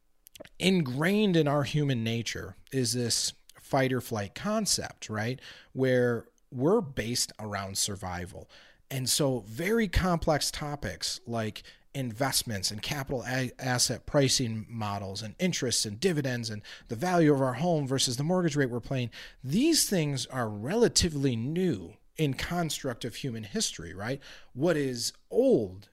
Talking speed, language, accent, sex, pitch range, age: 135 wpm, English, American, male, 115-155 Hz, 40-59